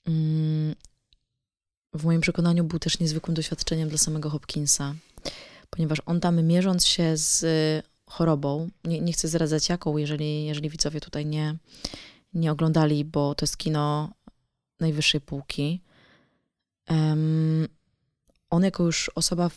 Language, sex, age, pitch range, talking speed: Polish, female, 20-39, 145-165 Hz, 125 wpm